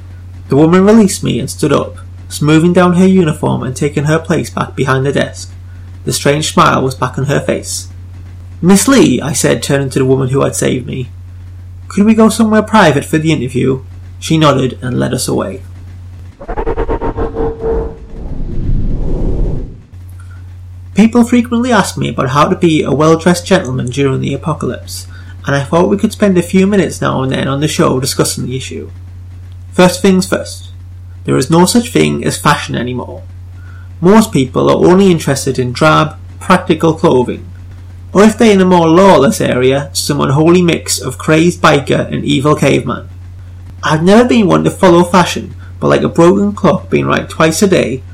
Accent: British